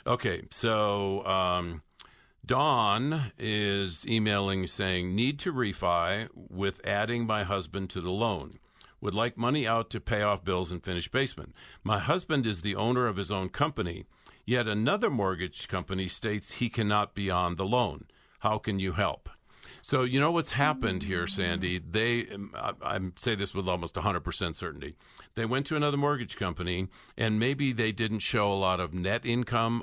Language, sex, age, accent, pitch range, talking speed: English, male, 50-69, American, 95-115 Hz, 170 wpm